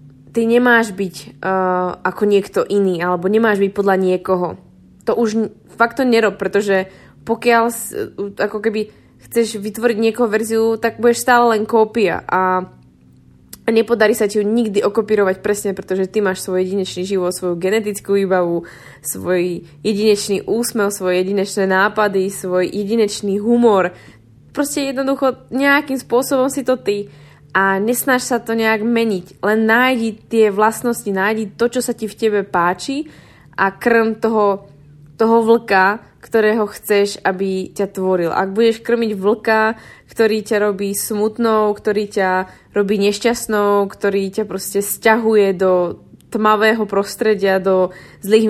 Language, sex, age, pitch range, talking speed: Slovak, female, 20-39, 190-225 Hz, 140 wpm